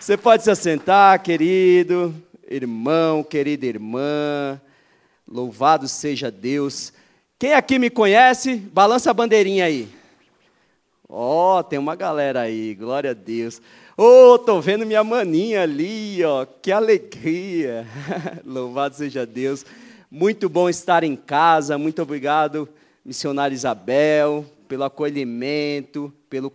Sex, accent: male, Brazilian